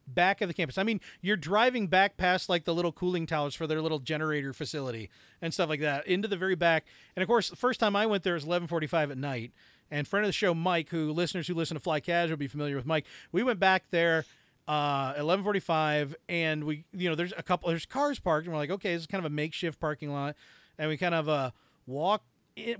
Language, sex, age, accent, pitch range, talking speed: English, male, 40-59, American, 155-195 Hz, 255 wpm